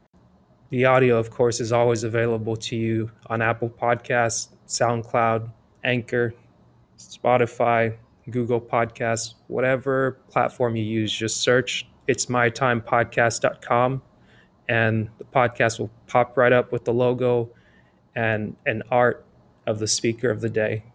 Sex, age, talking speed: male, 20-39, 125 wpm